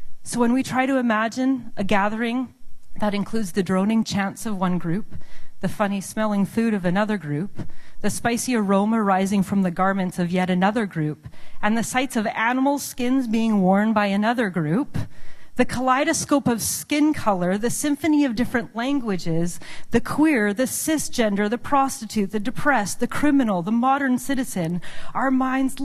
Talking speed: 160 wpm